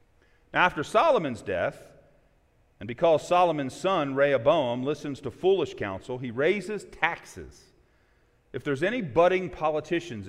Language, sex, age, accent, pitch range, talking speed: English, male, 40-59, American, 120-160 Hz, 120 wpm